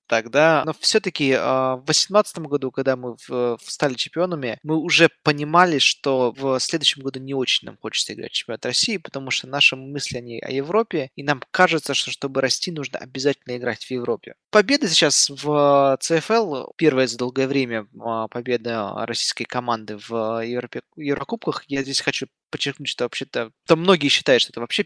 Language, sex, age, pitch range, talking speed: Russian, male, 20-39, 125-160 Hz, 175 wpm